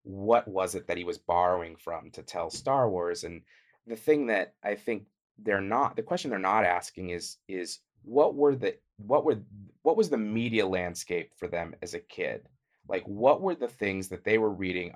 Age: 30-49